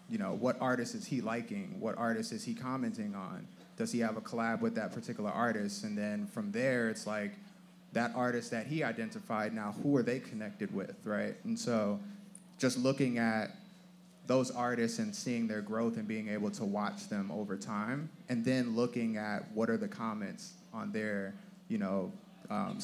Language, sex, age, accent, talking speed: English, male, 30-49, American, 190 wpm